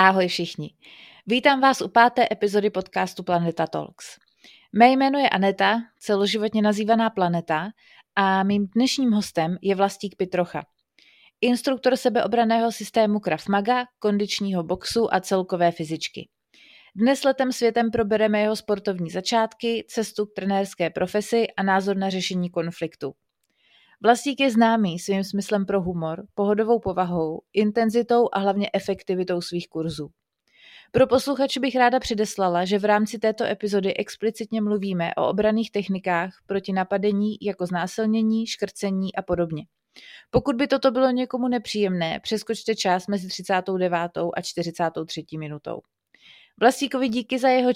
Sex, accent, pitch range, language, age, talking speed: female, native, 185-230 Hz, Czech, 30-49, 130 wpm